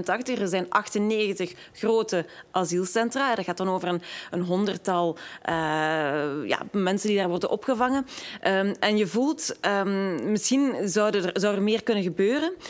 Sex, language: female, Dutch